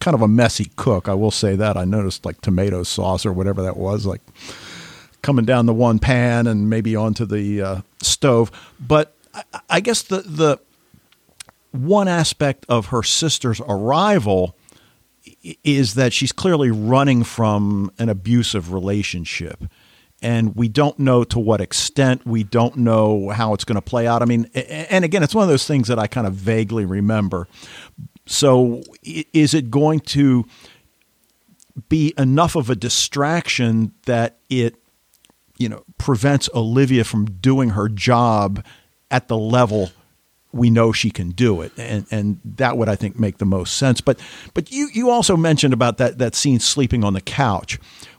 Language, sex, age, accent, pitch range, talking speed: English, male, 50-69, American, 105-140 Hz, 165 wpm